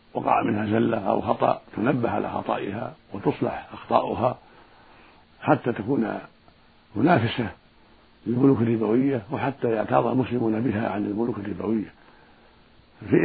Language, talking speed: Arabic, 105 wpm